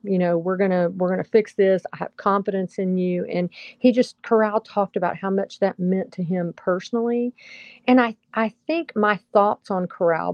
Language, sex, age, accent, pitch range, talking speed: English, female, 40-59, American, 175-205 Hz, 195 wpm